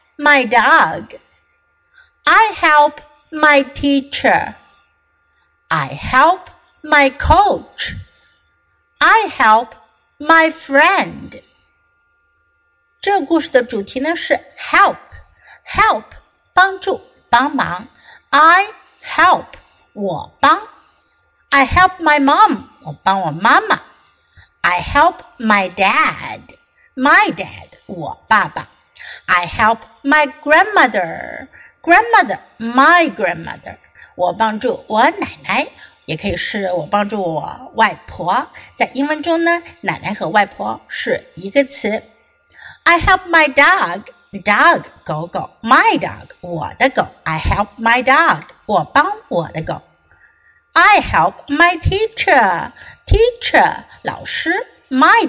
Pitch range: 215-325 Hz